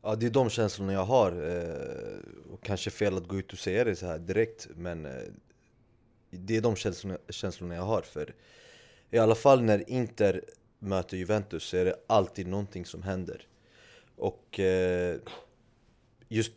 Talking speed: 170 wpm